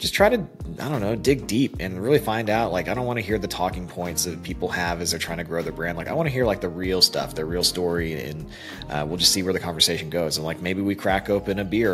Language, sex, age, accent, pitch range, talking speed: English, male, 30-49, American, 85-110 Hz, 300 wpm